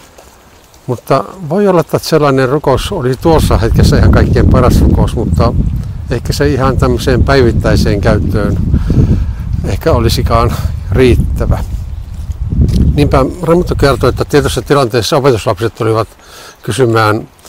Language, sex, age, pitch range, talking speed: Finnish, male, 60-79, 90-125 Hz, 110 wpm